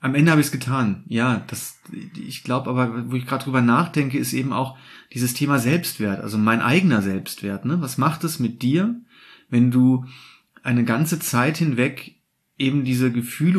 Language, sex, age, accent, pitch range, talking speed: German, male, 30-49, German, 115-150 Hz, 180 wpm